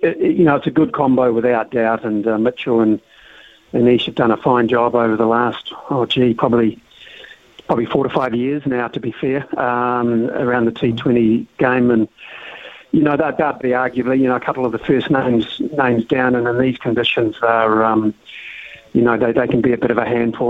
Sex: male